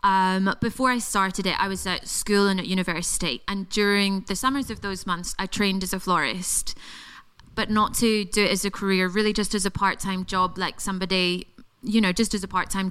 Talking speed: 215 wpm